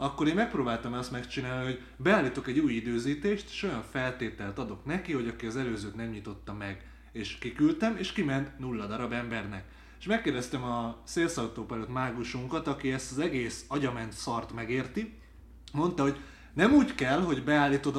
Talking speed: 160 wpm